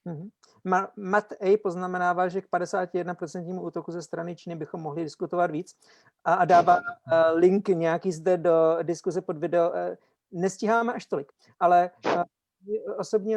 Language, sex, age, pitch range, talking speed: Slovak, male, 50-69, 165-185 Hz, 130 wpm